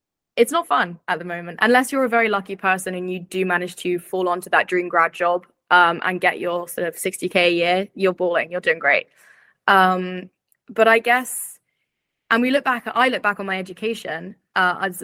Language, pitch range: English, 180-205 Hz